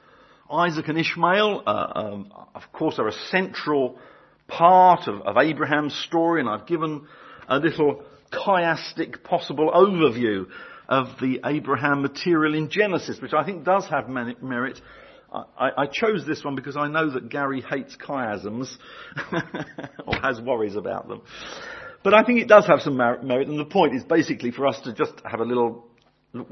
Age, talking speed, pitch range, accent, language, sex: 50-69, 165 wpm, 120-170 Hz, British, English, male